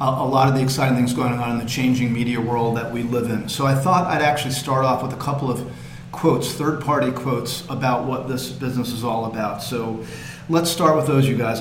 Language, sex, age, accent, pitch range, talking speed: English, male, 40-59, American, 120-135 Hz, 235 wpm